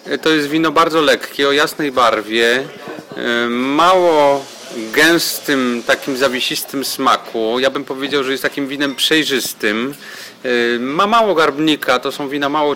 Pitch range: 130-150 Hz